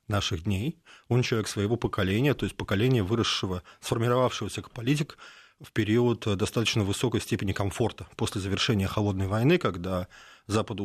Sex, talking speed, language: male, 140 wpm, Russian